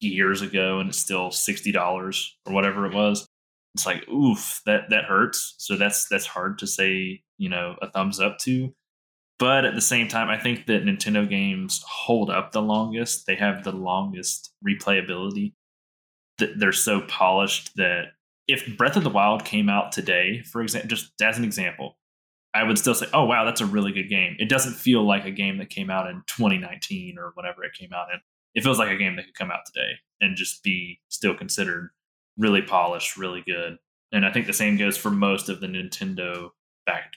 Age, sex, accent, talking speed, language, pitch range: 20-39, male, American, 200 wpm, English, 95-130 Hz